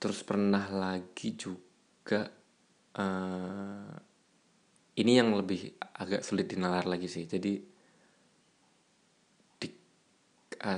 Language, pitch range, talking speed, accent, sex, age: Indonesian, 95-105 Hz, 90 wpm, native, male, 20-39